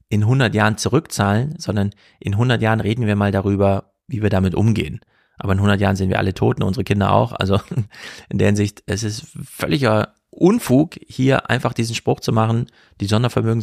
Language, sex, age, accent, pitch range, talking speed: German, male, 40-59, German, 100-135 Hz, 190 wpm